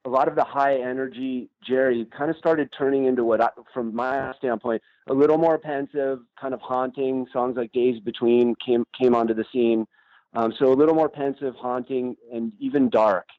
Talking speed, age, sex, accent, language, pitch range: 190 wpm, 40-59, male, American, English, 115-130 Hz